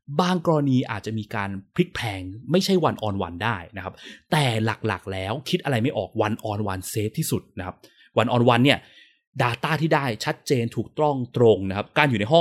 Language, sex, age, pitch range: Thai, male, 20-39, 105-150 Hz